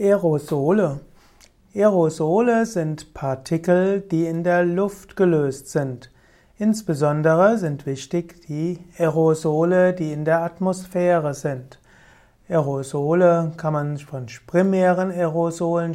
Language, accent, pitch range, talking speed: German, German, 150-180 Hz, 100 wpm